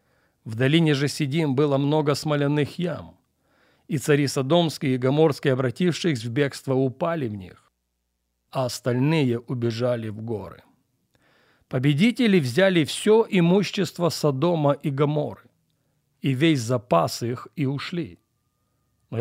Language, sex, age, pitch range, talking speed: Russian, male, 40-59, 125-165 Hz, 120 wpm